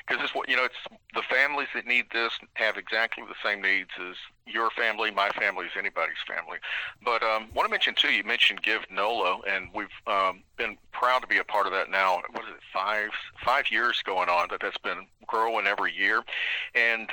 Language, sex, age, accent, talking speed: English, male, 40-59, American, 215 wpm